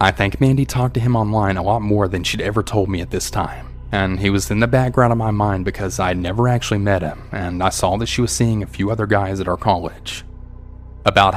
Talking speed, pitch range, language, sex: 260 wpm, 90-115 Hz, English, male